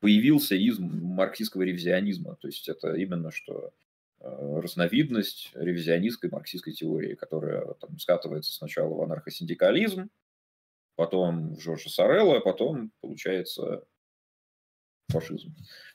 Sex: male